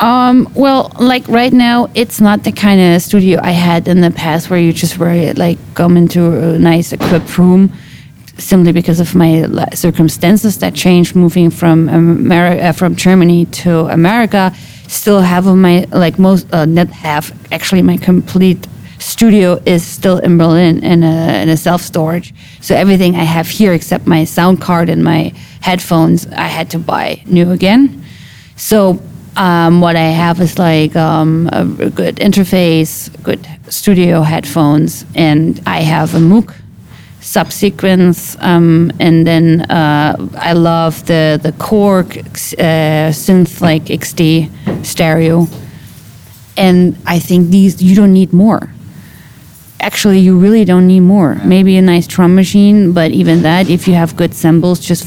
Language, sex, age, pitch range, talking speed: English, female, 30-49, 160-185 Hz, 155 wpm